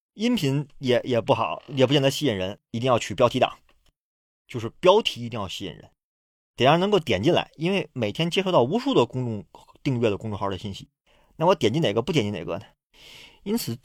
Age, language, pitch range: 30-49, Chinese, 105-140 Hz